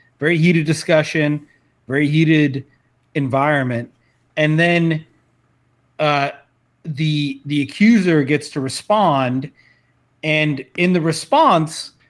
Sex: male